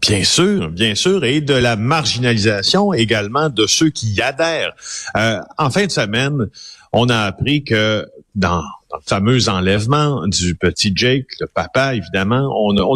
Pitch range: 100-135 Hz